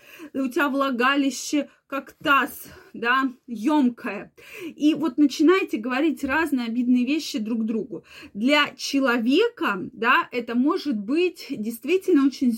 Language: Russian